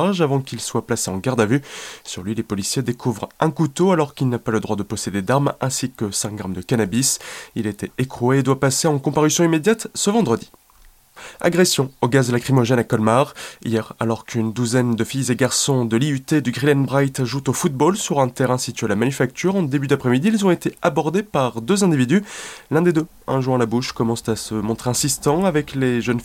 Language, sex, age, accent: French, male, 20-39, French